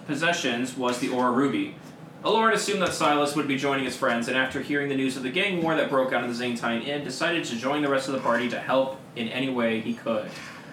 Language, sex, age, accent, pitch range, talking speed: English, male, 20-39, American, 130-160 Hz, 250 wpm